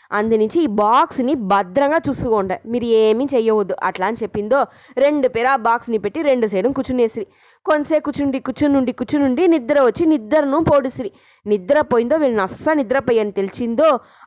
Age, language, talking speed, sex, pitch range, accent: 20-39, English, 120 wpm, female, 220-290 Hz, Indian